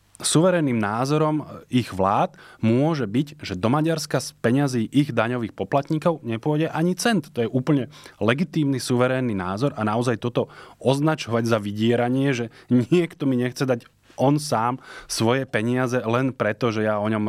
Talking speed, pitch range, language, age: 155 wpm, 110-130 Hz, Slovak, 20-39